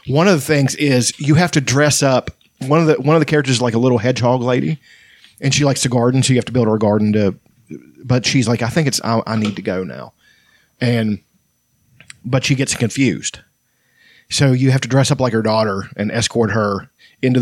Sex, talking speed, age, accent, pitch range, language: male, 230 wpm, 40-59, American, 105-130 Hz, English